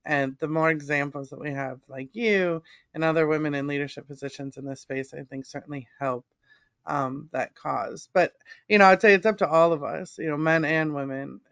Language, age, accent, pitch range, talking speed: English, 30-49, American, 140-165 Hz, 215 wpm